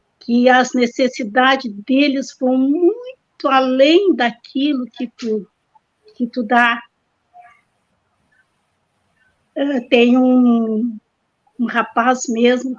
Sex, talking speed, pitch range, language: female, 80 wpm, 230-270 Hz, Portuguese